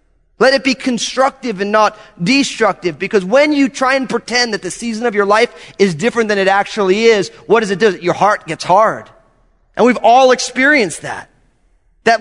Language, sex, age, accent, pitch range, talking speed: English, male, 30-49, American, 175-260 Hz, 190 wpm